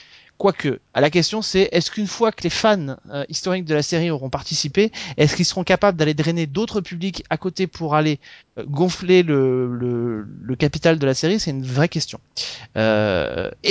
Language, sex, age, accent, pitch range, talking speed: French, male, 30-49, French, 135-175 Hz, 190 wpm